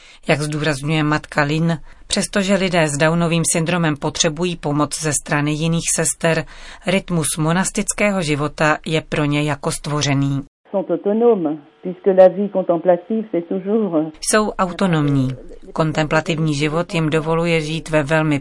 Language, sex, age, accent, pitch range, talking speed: Czech, female, 40-59, native, 155-190 Hz, 105 wpm